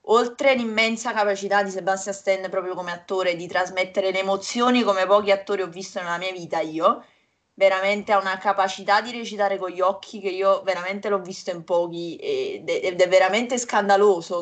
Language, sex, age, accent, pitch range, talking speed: Italian, female, 20-39, native, 175-210 Hz, 175 wpm